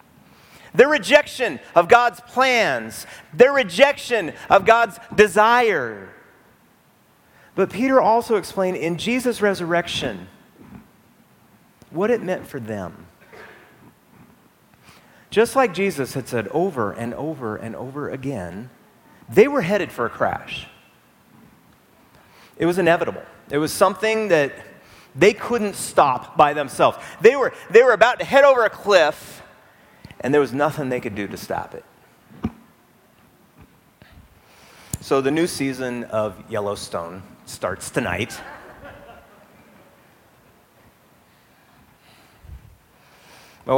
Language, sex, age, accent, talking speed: English, male, 30-49, American, 110 wpm